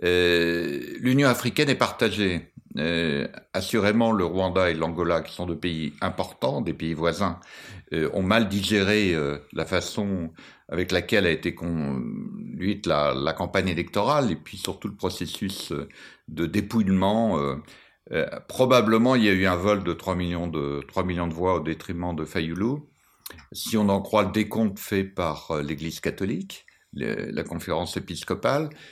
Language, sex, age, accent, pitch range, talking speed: French, male, 60-79, French, 85-115 Hz, 145 wpm